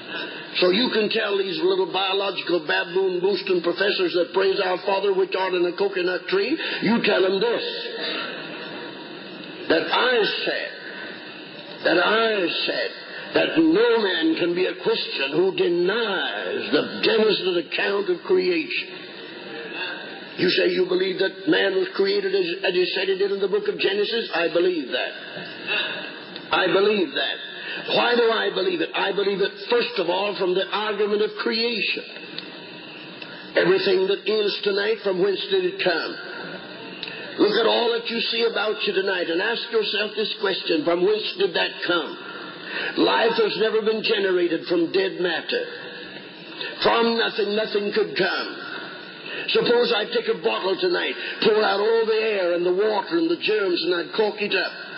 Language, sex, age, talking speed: English, male, 50-69, 160 wpm